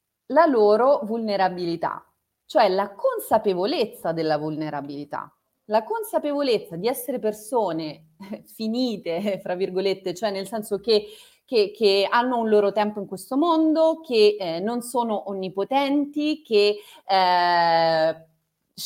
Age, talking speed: 30-49, 115 wpm